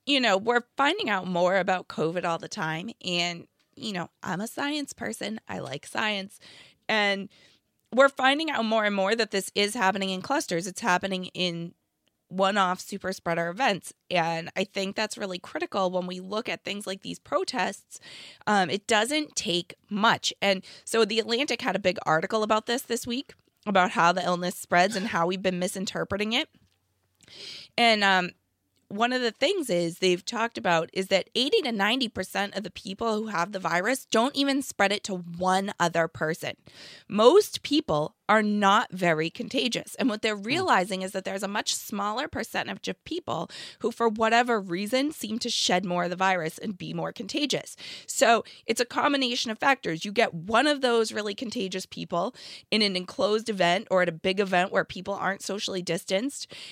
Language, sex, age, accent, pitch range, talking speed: English, female, 20-39, American, 180-230 Hz, 185 wpm